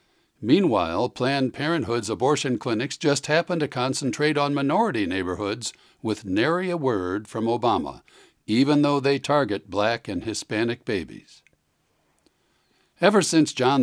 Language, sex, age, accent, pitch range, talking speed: English, male, 60-79, American, 115-150 Hz, 125 wpm